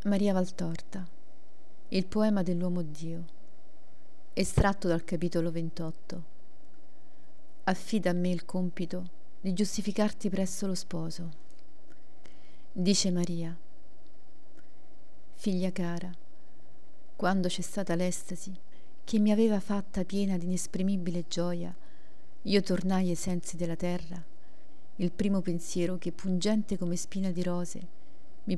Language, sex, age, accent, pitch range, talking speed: Italian, female, 40-59, native, 175-200 Hz, 110 wpm